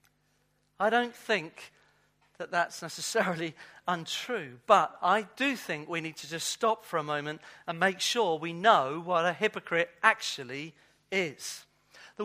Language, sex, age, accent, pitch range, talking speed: English, male, 40-59, British, 185-235 Hz, 145 wpm